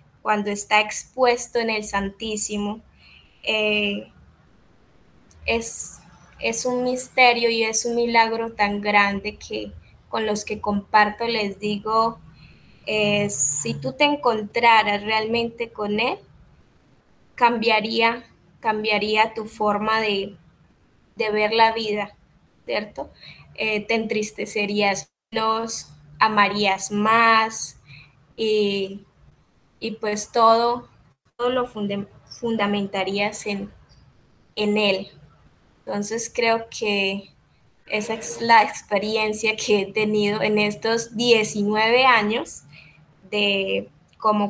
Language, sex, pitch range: Spanish, female, 200-225 Hz